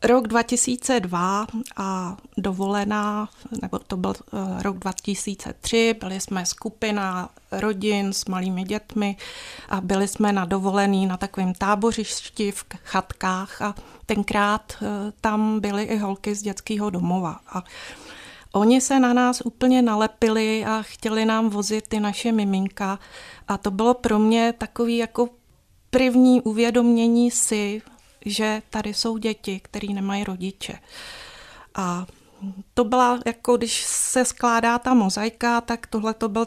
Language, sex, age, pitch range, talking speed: Czech, female, 30-49, 195-230 Hz, 130 wpm